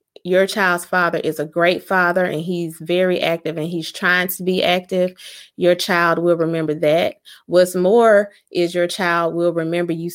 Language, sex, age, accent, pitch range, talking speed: English, female, 30-49, American, 165-180 Hz, 180 wpm